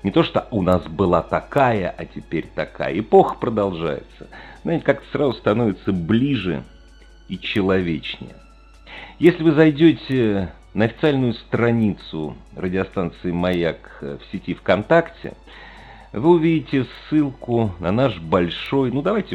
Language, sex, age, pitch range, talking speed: Russian, male, 50-69, 90-140 Hz, 120 wpm